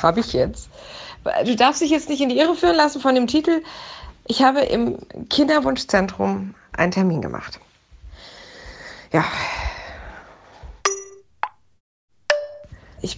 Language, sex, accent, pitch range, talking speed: German, female, German, 190-270 Hz, 115 wpm